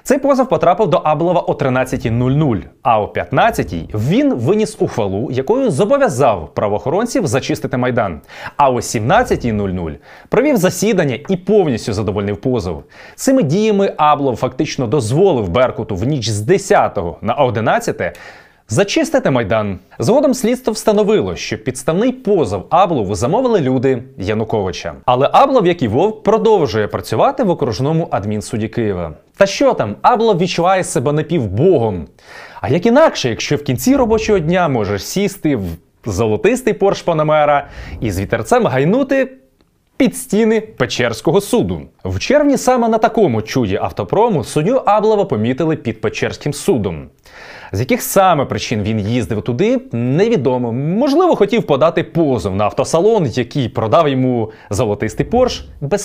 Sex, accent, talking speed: male, native, 135 wpm